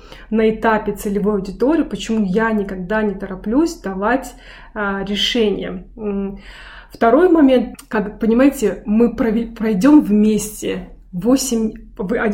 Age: 20-39